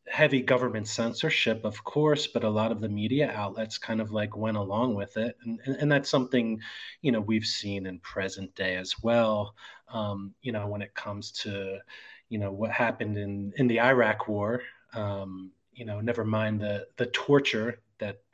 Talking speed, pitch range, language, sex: 190 wpm, 105-130 Hz, English, male